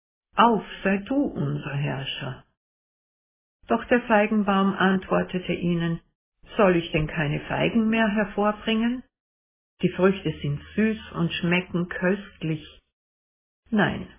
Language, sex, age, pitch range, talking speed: German, female, 60-79, 150-205 Hz, 105 wpm